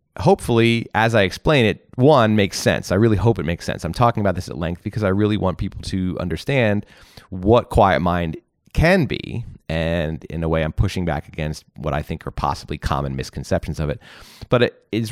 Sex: male